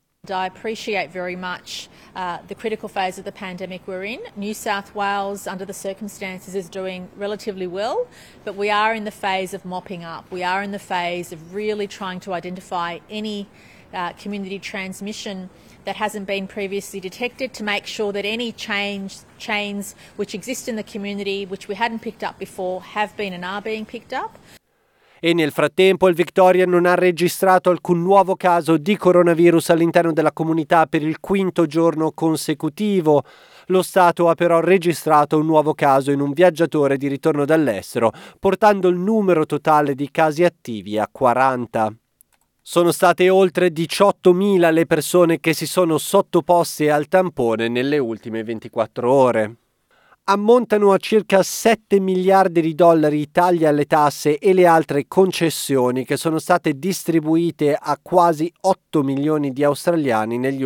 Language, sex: Italian, female